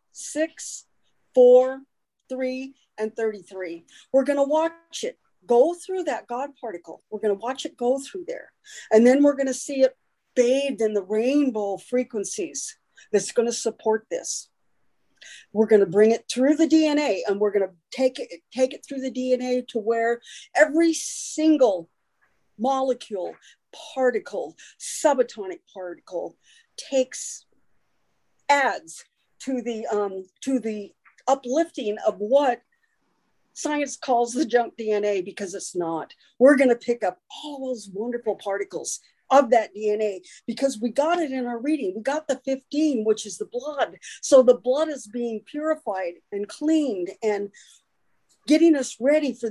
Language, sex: English, female